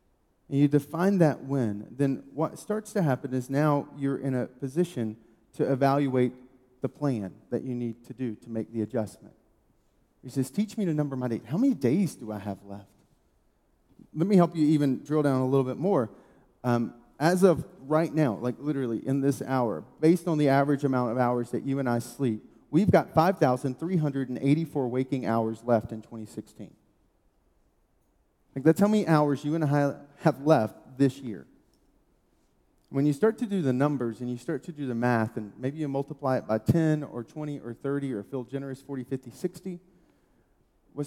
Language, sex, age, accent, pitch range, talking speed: English, male, 30-49, American, 120-155 Hz, 190 wpm